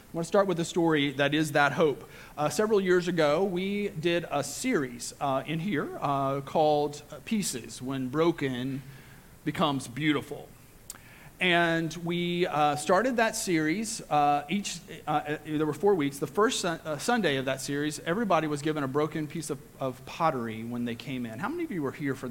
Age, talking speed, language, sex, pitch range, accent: 40-59, 185 wpm, English, male, 135-170 Hz, American